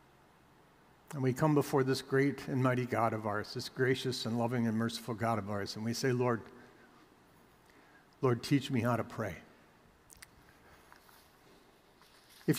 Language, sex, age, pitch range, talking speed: English, male, 50-69, 130-180 Hz, 150 wpm